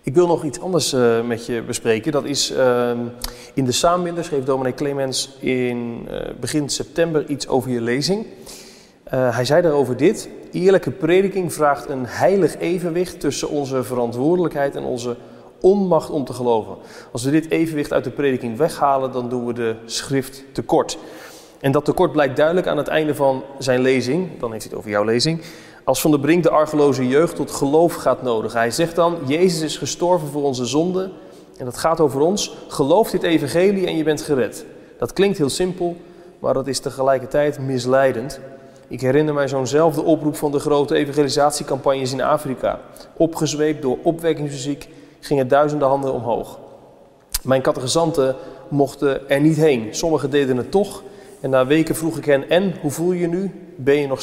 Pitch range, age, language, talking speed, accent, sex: 130-165 Hz, 30-49, Dutch, 180 wpm, Dutch, male